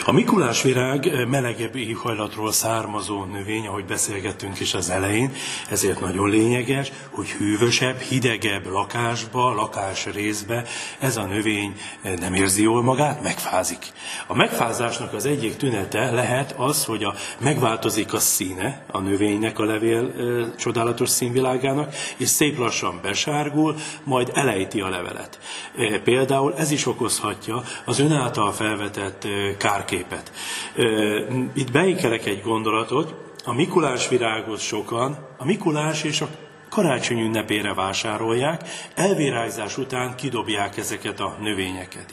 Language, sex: Hungarian, male